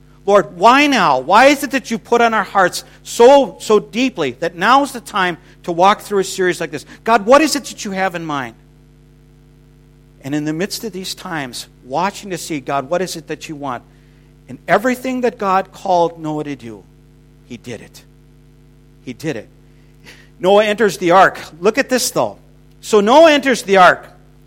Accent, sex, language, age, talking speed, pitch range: American, male, English, 50-69, 195 wpm, 145-210 Hz